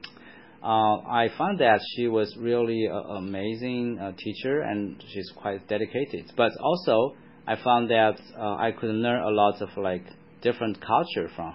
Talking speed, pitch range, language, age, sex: 160 wpm, 100-120 Hz, Vietnamese, 30-49, male